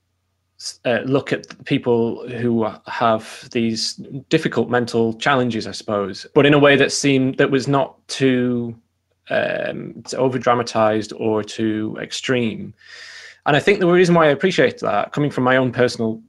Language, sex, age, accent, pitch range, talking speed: English, male, 20-39, British, 110-130 Hz, 160 wpm